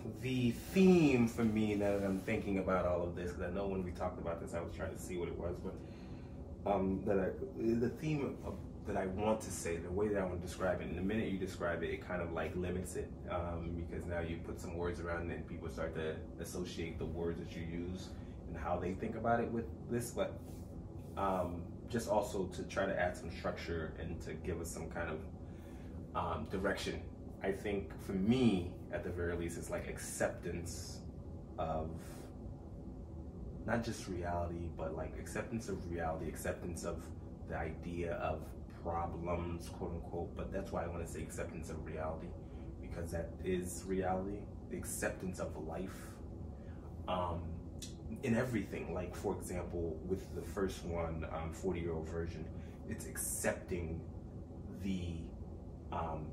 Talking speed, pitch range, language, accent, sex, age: 185 wpm, 85-95 Hz, English, American, male, 20-39